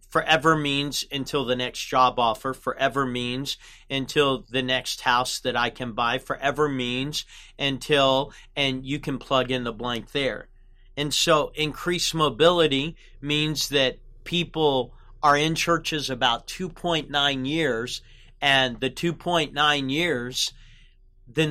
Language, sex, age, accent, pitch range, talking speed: English, male, 40-59, American, 125-150 Hz, 130 wpm